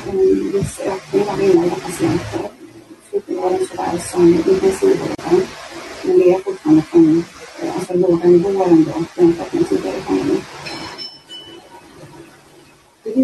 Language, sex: English, female